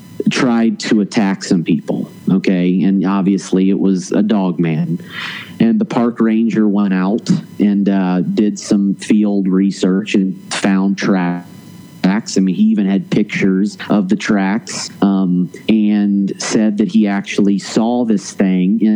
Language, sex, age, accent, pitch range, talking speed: English, male, 30-49, American, 95-115 Hz, 150 wpm